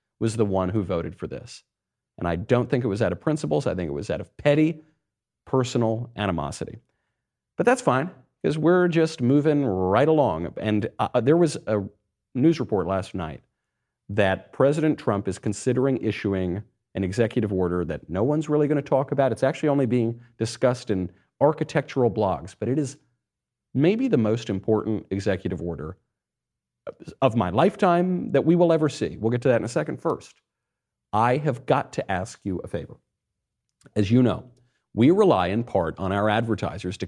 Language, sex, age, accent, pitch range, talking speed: English, male, 40-59, American, 100-135 Hz, 180 wpm